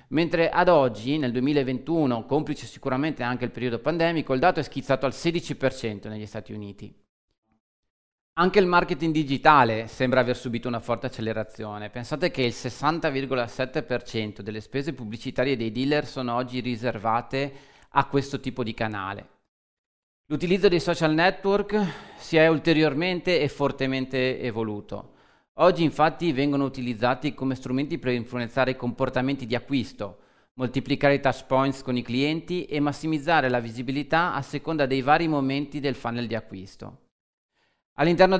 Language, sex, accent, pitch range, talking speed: Italian, male, native, 120-150 Hz, 140 wpm